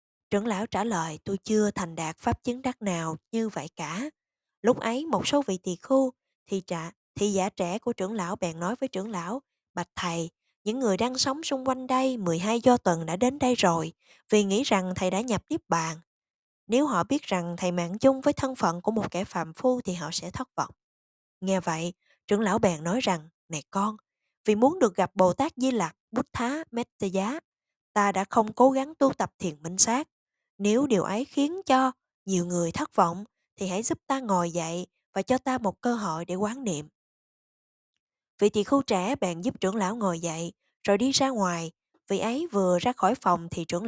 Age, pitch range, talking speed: 20-39, 180-250 Hz, 210 wpm